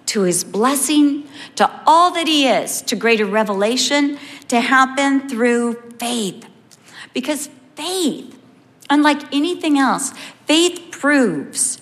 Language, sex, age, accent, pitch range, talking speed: English, female, 50-69, American, 235-295 Hz, 110 wpm